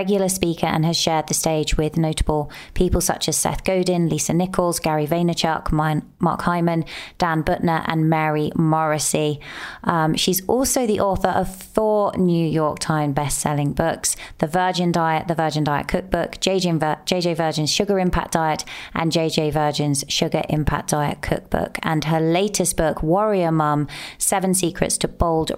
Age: 20-39